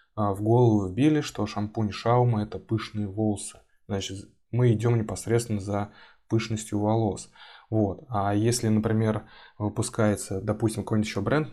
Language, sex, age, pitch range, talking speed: Russian, male, 20-39, 100-115 Hz, 125 wpm